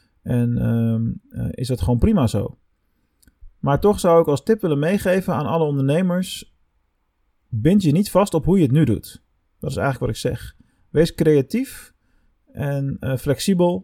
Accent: Dutch